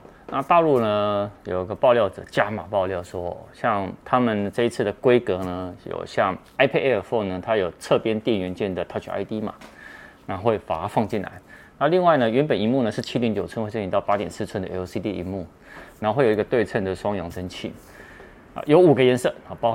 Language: Chinese